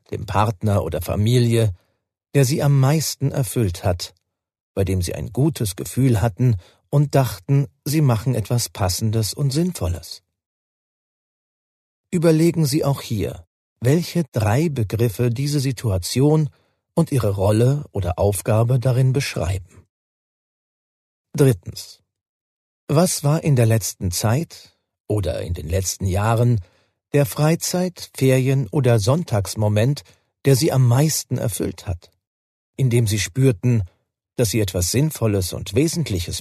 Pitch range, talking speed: 95-140 Hz, 120 wpm